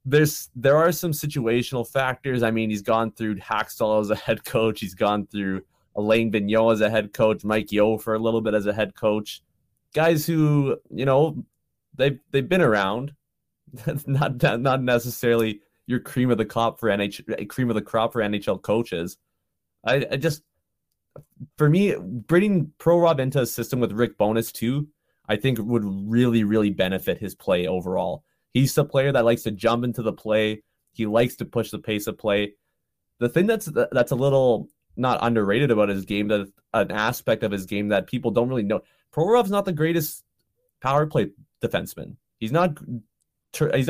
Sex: male